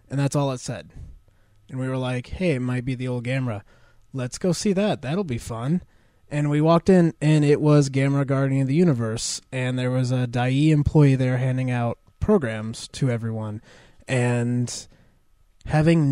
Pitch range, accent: 120-145 Hz, American